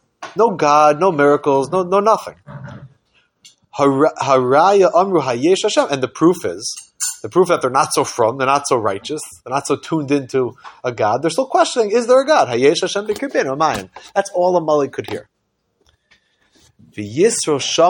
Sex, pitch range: male, 125-190 Hz